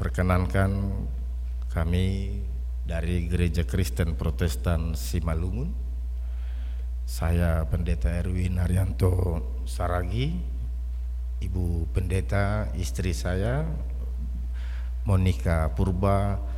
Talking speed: 65 wpm